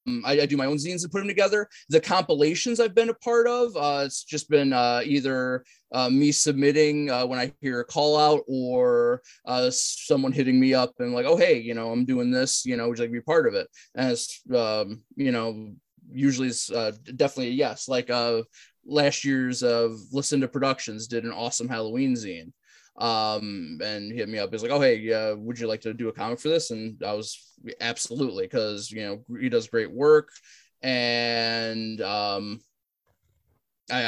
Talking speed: 200 wpm